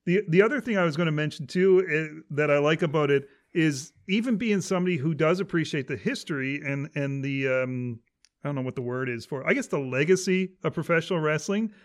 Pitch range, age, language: 140-180 Hz, 40-59, English